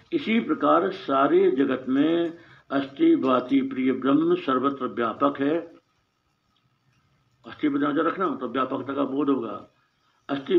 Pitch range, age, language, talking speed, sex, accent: 130-170 Hz, 50-69, Hindi, 110 wpm, male, native